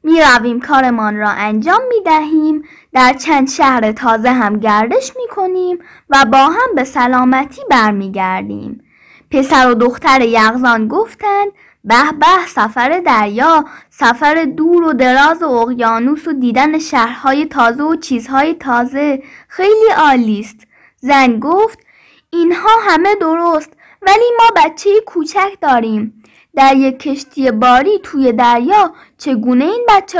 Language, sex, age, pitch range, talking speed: Persian, female, 10-29, 245-360 Hz, 125 wpm